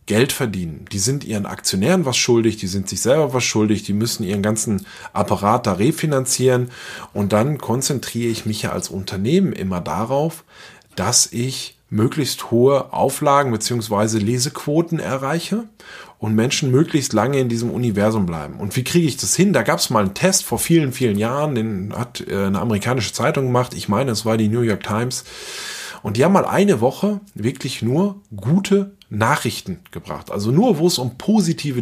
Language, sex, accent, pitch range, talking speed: German, male, German, 105-150 Hz, 175 wpm